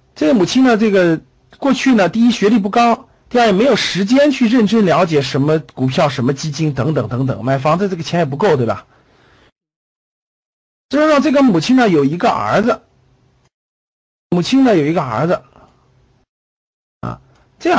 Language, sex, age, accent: Chinese, male, 50-69, native